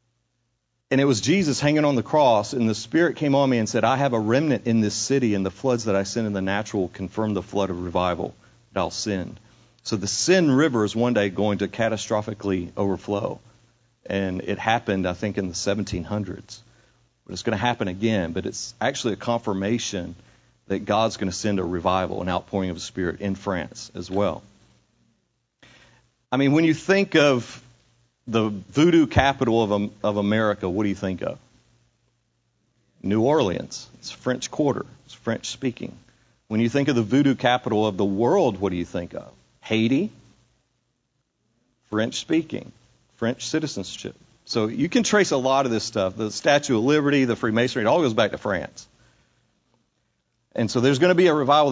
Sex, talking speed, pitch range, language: male, 185 wpm, 100-125 Hz, English